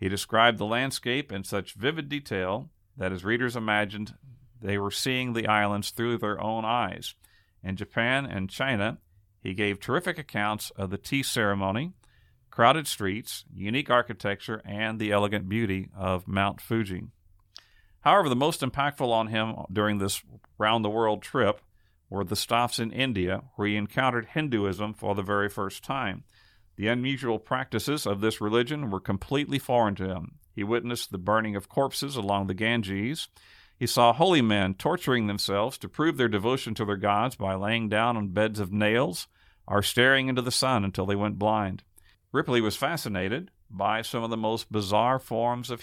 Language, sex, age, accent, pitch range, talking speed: English, male, 50-69, American, 100-120 Hz, 170 wpm